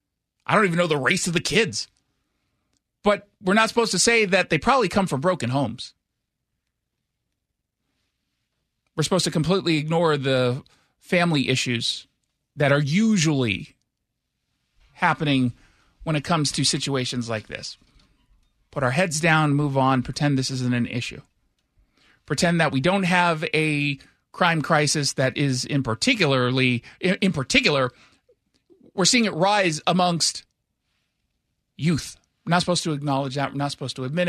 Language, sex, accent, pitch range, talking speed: English, male, American, 135-185 Hz, 145 wpm